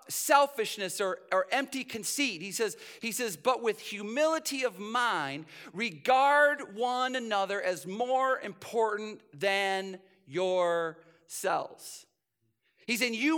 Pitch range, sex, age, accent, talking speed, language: 190-255 Hz, male, 40-59, American, 110 wpm, English